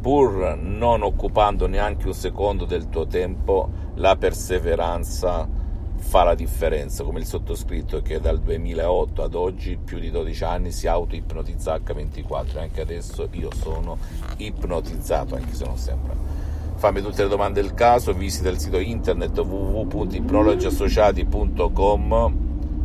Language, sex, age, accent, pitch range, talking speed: Italian, male, 50-69, native, 80-100 Hz, 130 wpm